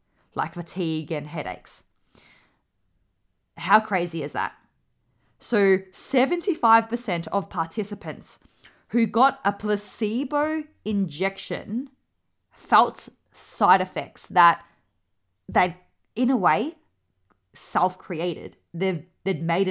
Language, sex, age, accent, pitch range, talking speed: English, female, 20-39, Australian, 170-225 Hz, 90 wpm